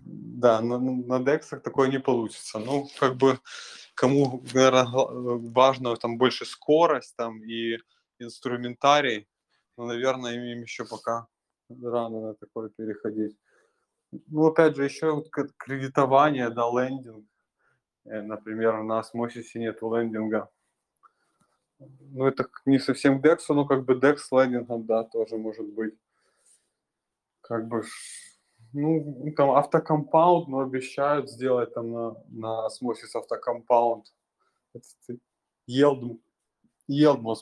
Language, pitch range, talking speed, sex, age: Russian, 115-140 Hz, 110 wpm, male, 20-39